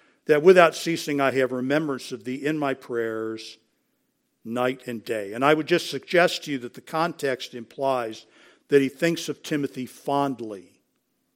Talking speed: 165 wpm